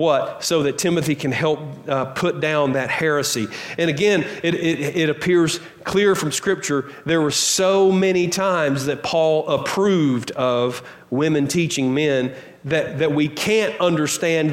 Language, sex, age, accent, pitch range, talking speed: English, male, 40-59, American, 140-170 Hz, 150 wpm